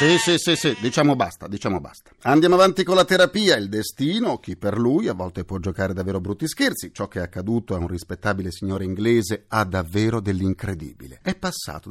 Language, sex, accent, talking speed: Italian, male, native, 195 wpm